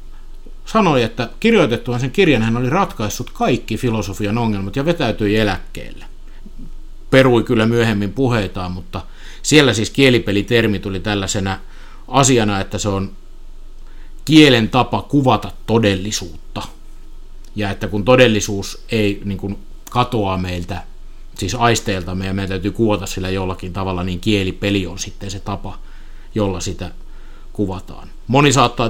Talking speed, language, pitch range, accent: 125 wpm, Finnish, 100-120 Hz, native